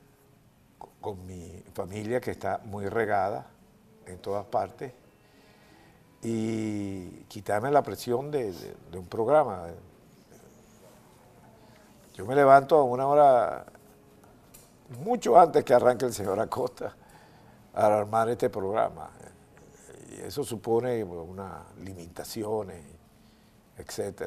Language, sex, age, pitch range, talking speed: Spanish, male, 60-79, 105-145 Hz, 105 wpm